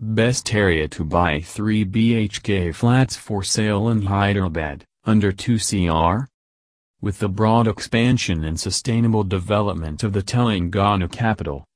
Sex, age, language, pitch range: male, 40-59, English, 95-115 Hz